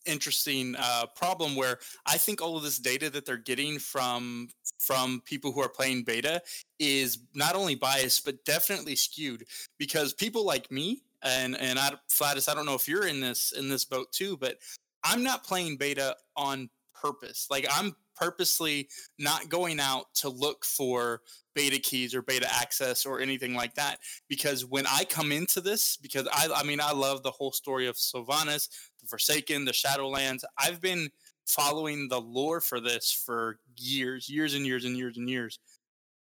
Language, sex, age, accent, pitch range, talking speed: English, male, 20-39, American, 125-150 Hz, 175 wpm